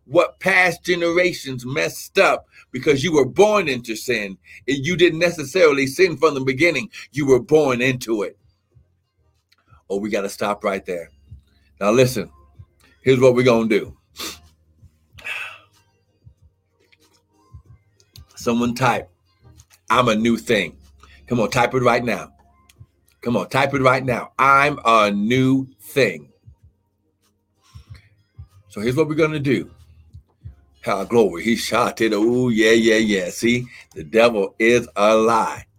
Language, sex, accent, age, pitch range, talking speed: English, male, American, 60-79, 95-130 Hz, 135 wpm